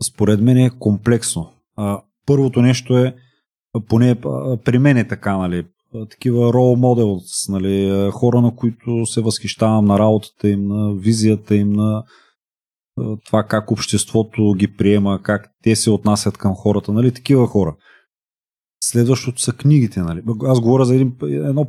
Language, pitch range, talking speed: Bulgarian, 100-120 Hz, 145 wpm